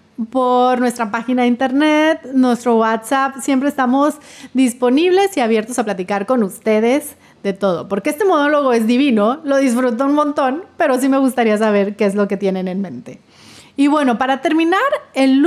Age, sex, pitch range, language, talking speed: 30-49, female, 220-300 Hz, Spanish, 170 wpm